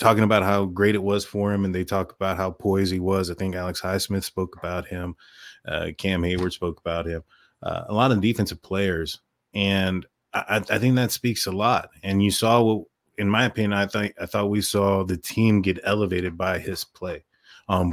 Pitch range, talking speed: 90-105 Hz, 215 wpm